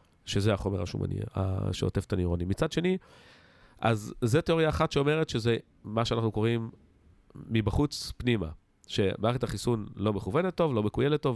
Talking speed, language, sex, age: 145 wpm, Hebrew, male, 40-59